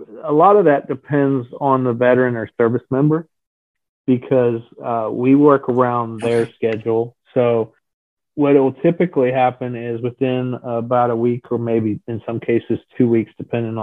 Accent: American